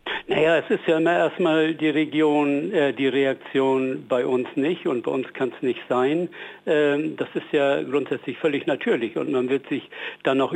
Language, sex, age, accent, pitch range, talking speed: German, male, 60-79, German, 125-145 Hz, 195 wpm